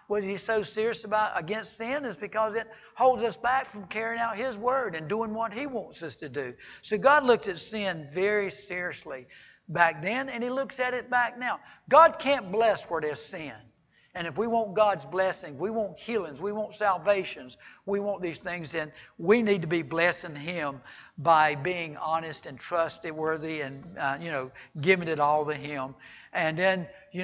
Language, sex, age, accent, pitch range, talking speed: English, male, 60-79, American, 165-215 Hz, 195 wpm